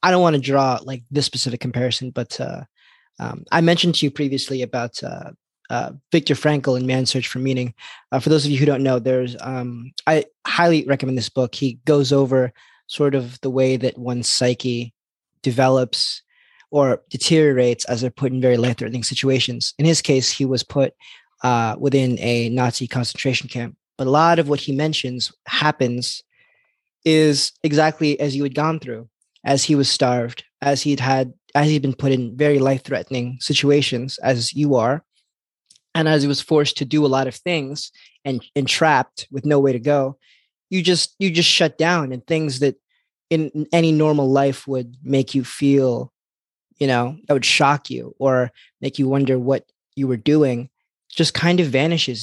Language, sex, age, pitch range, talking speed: English, male, 20-39, 125-150 Hz, 185 wpm